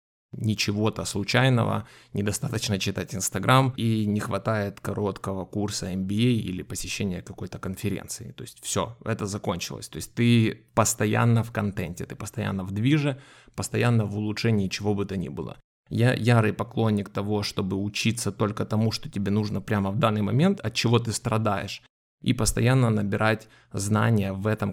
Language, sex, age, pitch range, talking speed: Russian, male, 20-39, 100-120 Hz, 155 wpm